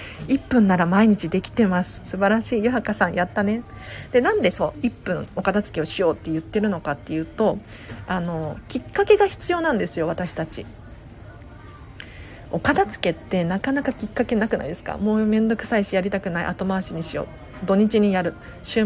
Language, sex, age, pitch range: Japanese, female, 40-59, 175-250 Hz